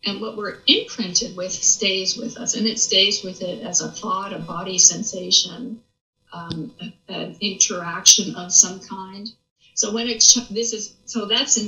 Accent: American